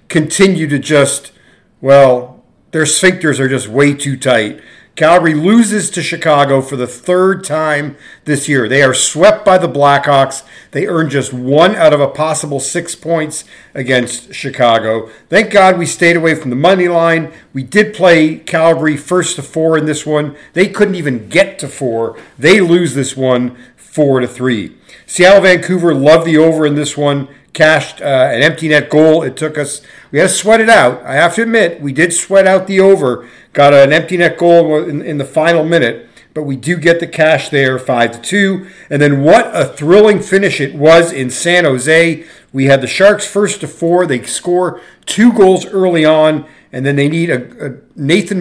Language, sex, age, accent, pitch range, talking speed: English, male, 50-69, American, 135-170 Hz, 190 wpm